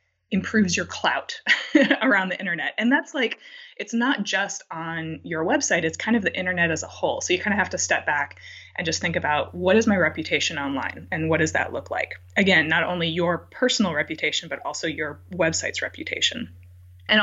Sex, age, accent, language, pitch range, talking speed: female, 20-39, American, English, 165-220 Hz, 200 wpm